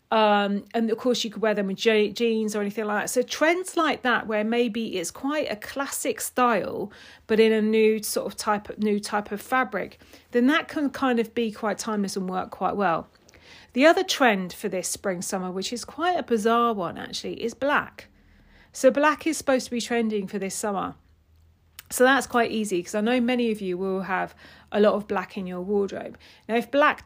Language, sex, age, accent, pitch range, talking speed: English, female, 40-59, British, 190-235 Hz, 215 wpm